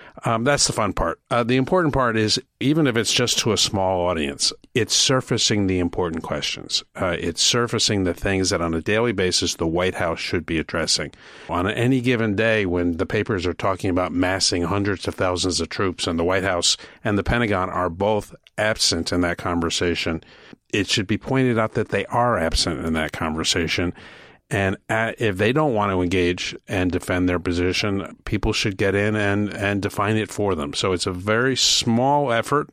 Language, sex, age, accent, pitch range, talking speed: English, male, 50-69, American, 90-120 Hz, 195 wpm